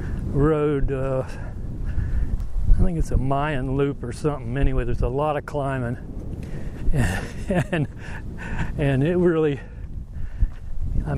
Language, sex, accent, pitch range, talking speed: English, male, American, 110-145 Hz, 120 wpm